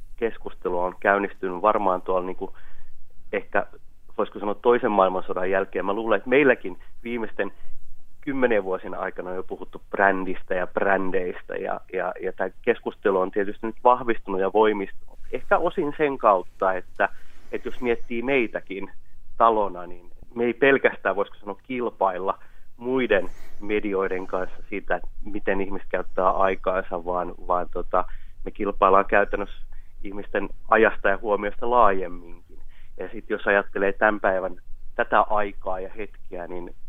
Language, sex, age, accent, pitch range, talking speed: Finnish, male, 30-49, native, 95-110 Hz, 140 wpm